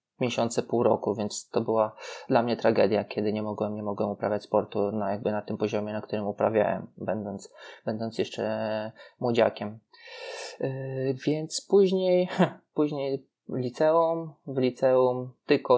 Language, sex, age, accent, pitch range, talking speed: Polish, male, 20-39, native, 115-145 Hz, 135 wpm